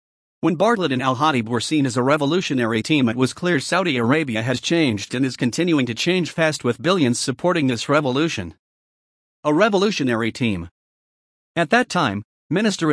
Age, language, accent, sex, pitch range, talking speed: 50-69, English, American, male, 120-155 Hz, 160 wpm